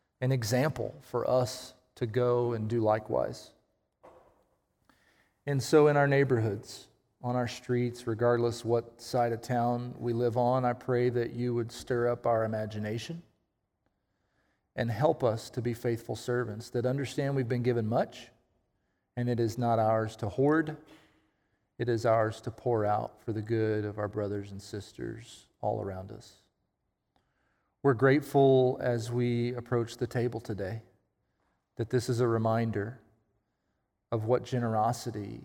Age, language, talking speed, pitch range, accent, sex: 40-59, English, 145 wpm, 110-125 Hz, American, male